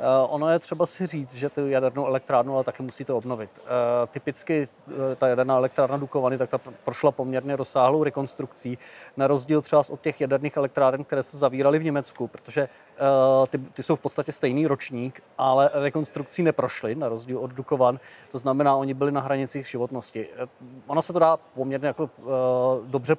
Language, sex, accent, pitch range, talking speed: Czech, male, native, 130-145 Hz, 165 wpm